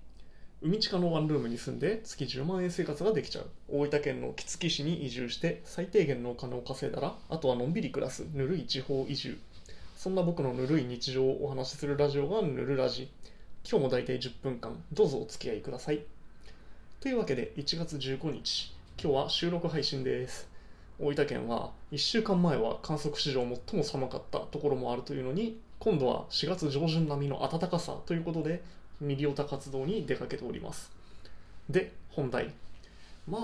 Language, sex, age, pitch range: Japanese, male, 20-39, 125-165 Hz